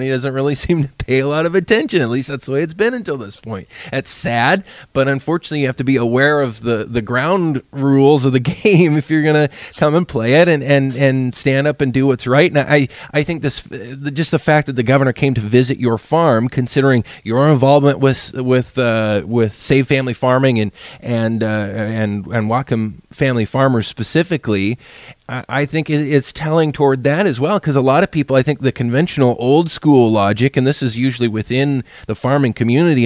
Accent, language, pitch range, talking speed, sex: American, English, 125-150 Hz, 210 wpm, male